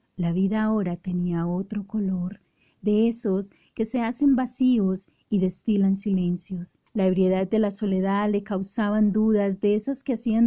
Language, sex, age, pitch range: Polish, female, 30-49, 190-220 Hz